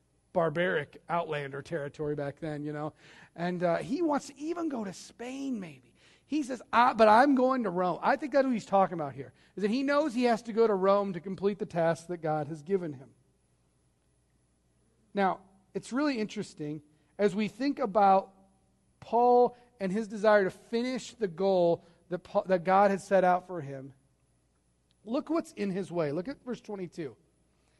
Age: 40-59